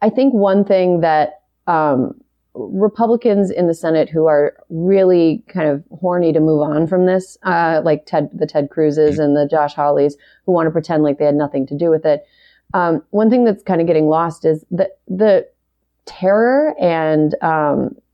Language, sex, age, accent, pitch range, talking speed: English, female, 30-49, American, 155-195 Hz, 190 wpm